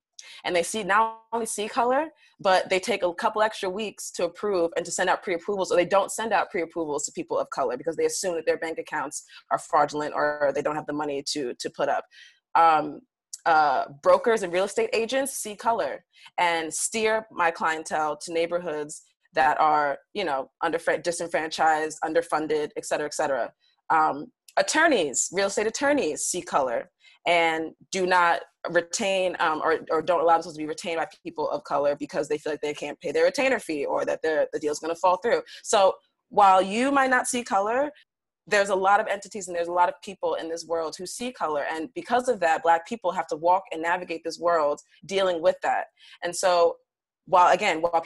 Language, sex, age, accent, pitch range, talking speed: English, female, 20-39, American, 160-210 Hz, 205 wpm